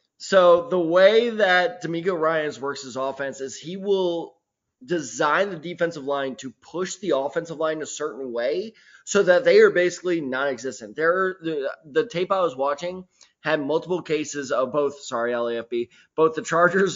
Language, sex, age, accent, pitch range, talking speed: English, male, 20-39, American, 150-180 Hz, 170 wpm